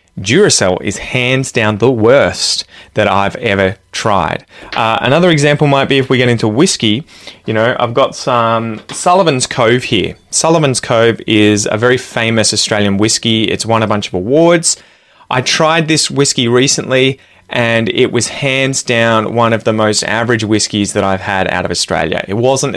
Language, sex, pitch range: English, male, 105-140 Hz